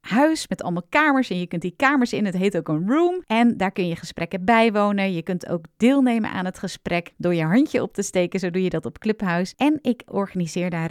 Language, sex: Dutch, female